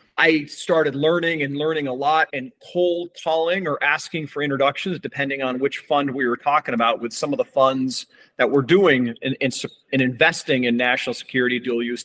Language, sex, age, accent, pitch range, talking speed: English, male, 40-59, American, 130-155 Hz, 185 wpm